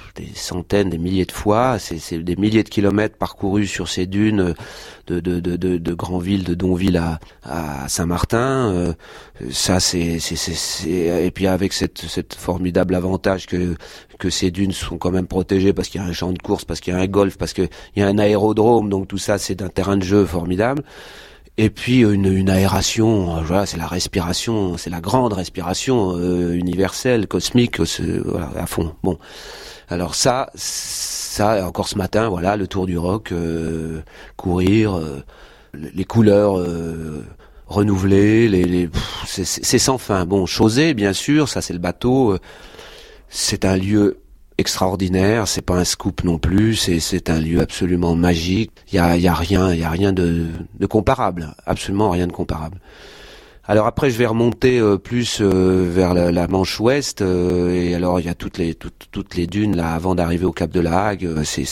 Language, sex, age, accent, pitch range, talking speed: French, male, 30-49, French, 85-100 Hz, 195 wpm